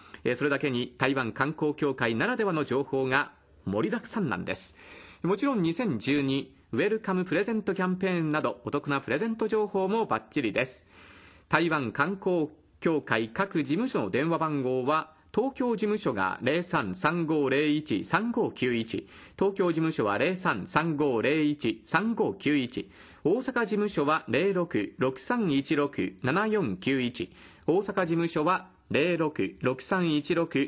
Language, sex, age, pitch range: Japanese, male, 40-59, 125-185 Hz